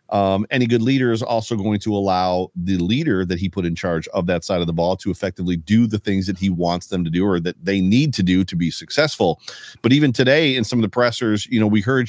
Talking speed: 270 wpm